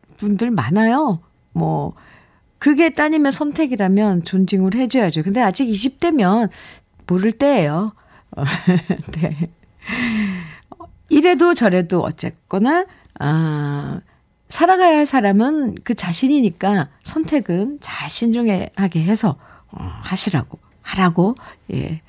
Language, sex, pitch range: Korean, female, 170-250 Hz